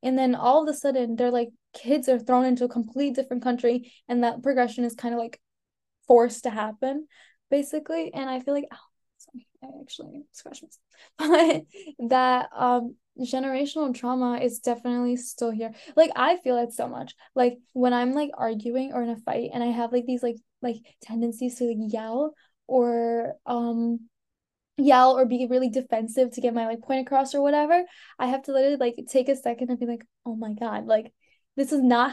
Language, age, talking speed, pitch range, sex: English, 10-29, 195 wpm, 235-270 Hz, female